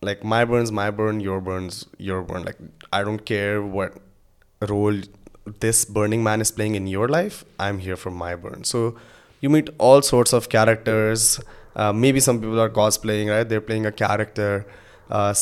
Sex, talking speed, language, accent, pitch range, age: male, 185 wpm, Hindi, native, 100-115 Hz, 20-39